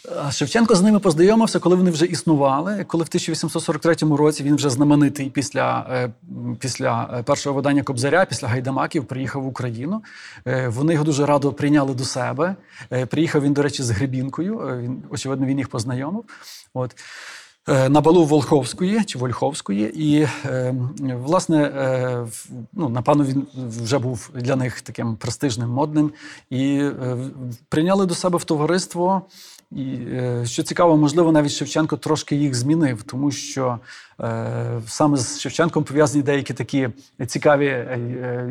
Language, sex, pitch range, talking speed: Ukrainian, male, 125-150 Hz, 140 wpm